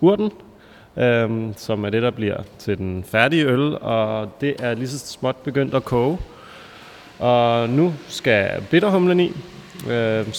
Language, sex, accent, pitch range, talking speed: Danish, male, native, 105-135 Hz, 150 wpm